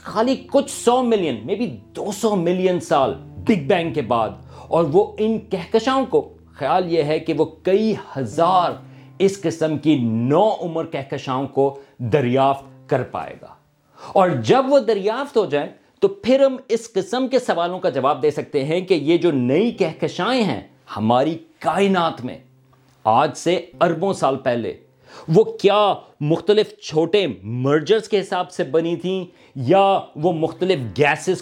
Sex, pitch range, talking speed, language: male, 140-200 Hz, 155 wpm, Urdu